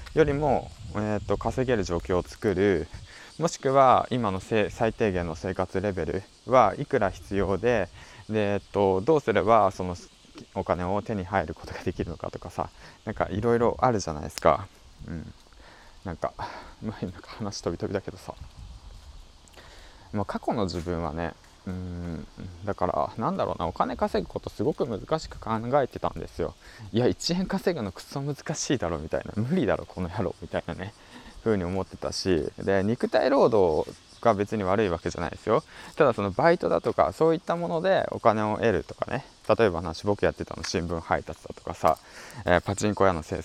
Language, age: Japanese, 20-39